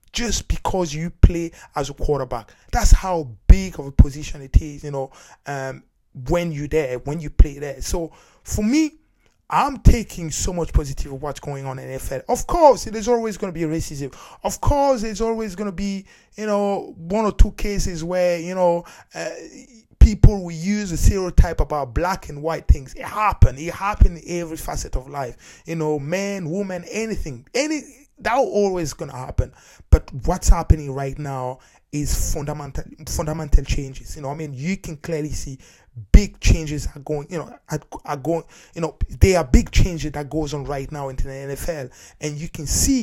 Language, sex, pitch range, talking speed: English, male, 140-190 Hz, 190 wpm